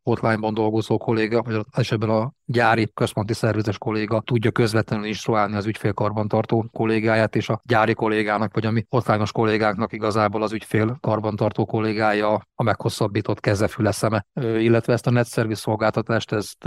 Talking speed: 135 wpm